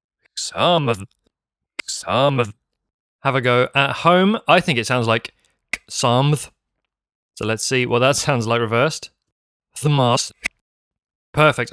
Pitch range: 110-145 Hz